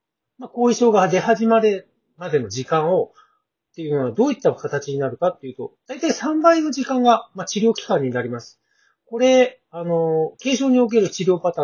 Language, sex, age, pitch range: Japanese, male, 40-59, 165-255 Hz